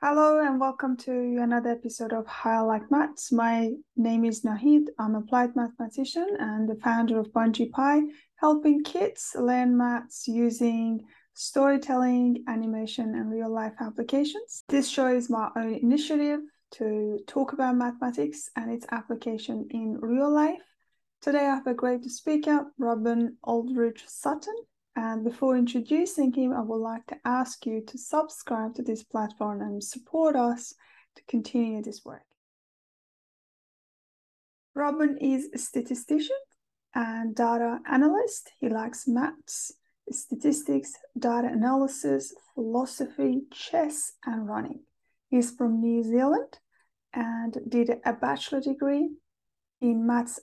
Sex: female